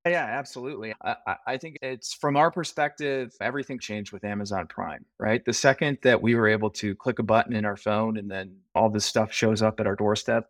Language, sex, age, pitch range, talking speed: English, male, 30-49, 105-120 Hz, 215 wpm